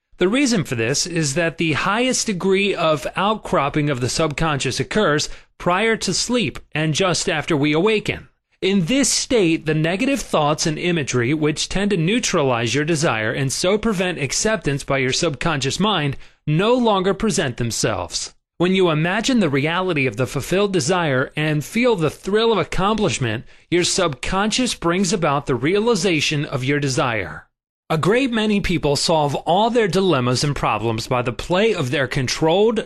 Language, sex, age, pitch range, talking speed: English, male, 30-49, 140-200 Hz, 165 wpm